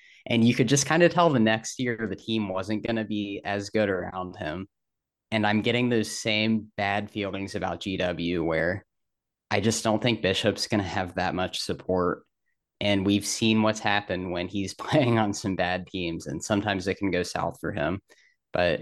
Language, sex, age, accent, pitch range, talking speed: English, male, 20-39, American, 95-120 Hz, 200 wpm